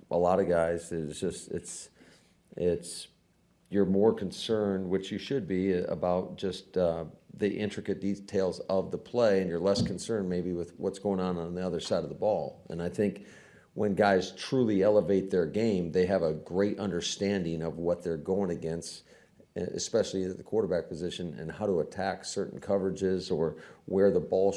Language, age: English, 40-59